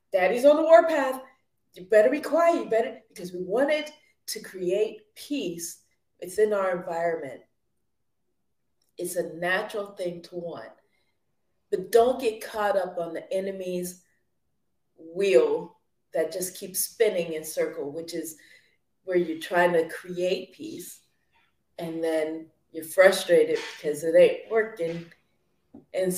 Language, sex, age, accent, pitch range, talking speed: English, female, 30-49, American, 175-235 Hz, 135 wpm